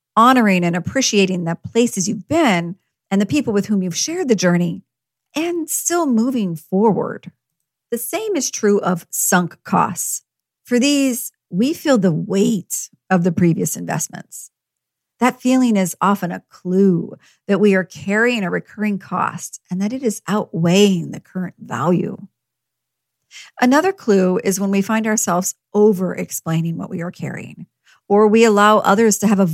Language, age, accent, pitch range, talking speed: English, 50-69, American, 180-230 Hz, 155 wpm